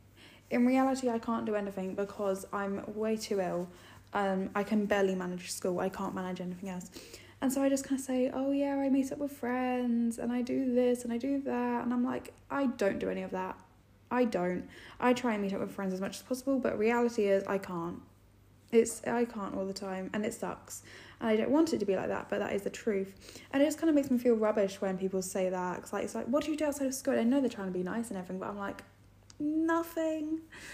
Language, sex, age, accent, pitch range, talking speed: English, female, 10-29, British, 195-265 Hz, 260 wpm